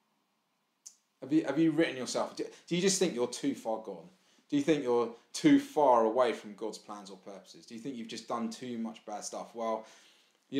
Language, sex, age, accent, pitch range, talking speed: English, male, 20-39, British, 110-150 Hz, 215 wpm